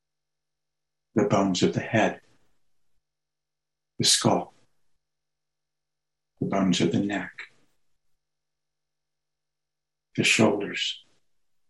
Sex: male